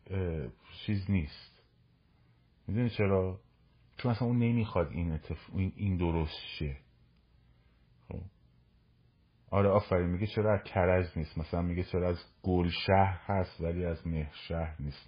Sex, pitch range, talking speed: male, 80-115 Hz, 125 wpm